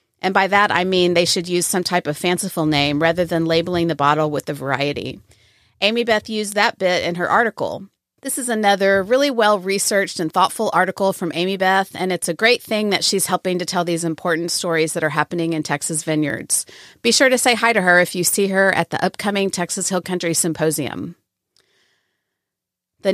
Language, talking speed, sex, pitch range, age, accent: English, 200 wpm, female, 170-205 Hz, 30-49, American